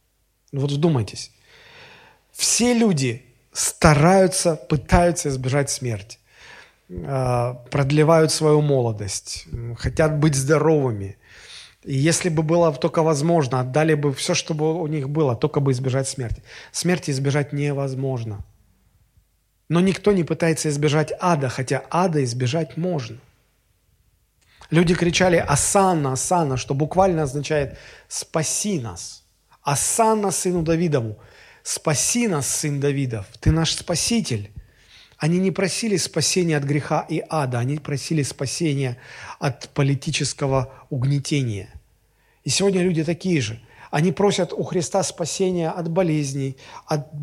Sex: male